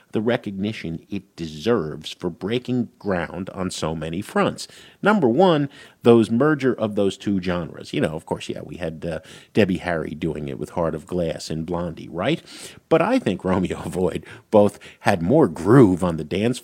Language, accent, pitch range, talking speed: English, American, 90-145 Hz, 180 wpm